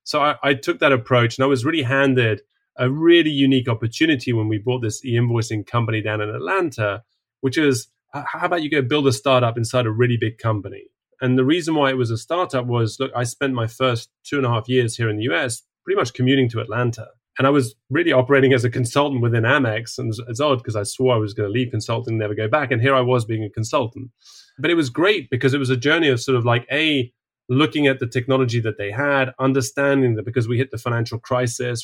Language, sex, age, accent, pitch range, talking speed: English, male, 30-49, British, 115-135 Hz, 240 wpm